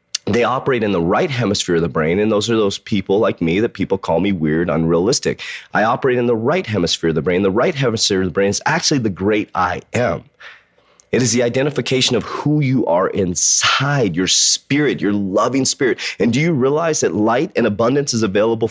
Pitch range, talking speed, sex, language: 110-155 Hz, 215 wpm, male, English